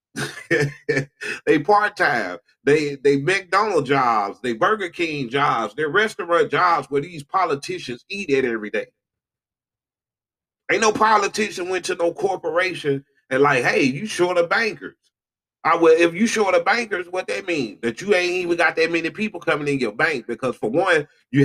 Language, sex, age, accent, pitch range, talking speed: English, male, 30-49, American, 135-185 Hz, 170 wpm